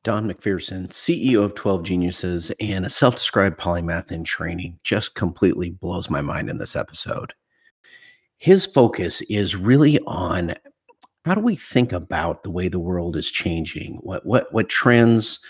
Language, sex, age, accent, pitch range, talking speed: English, male, 50-69, American, 90-120 Hz, 155 wpm